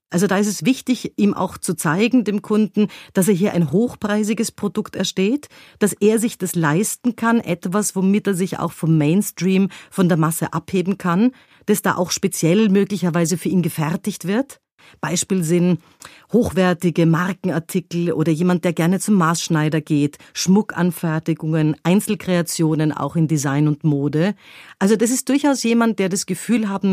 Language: German